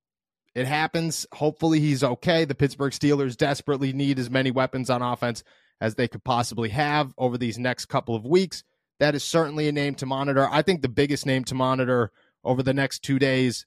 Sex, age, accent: male, 30-49, American